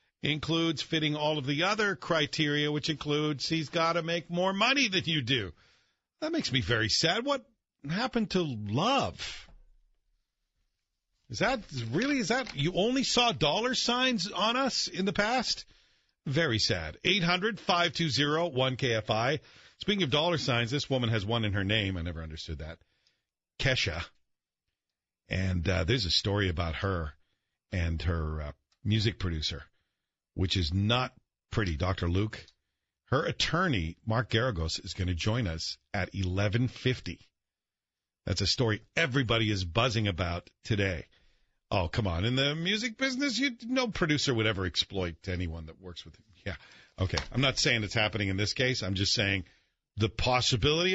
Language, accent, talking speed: English, American, 155 wpm